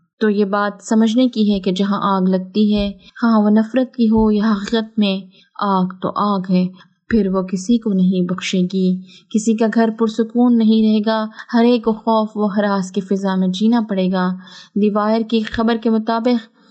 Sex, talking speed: female, 195 wpm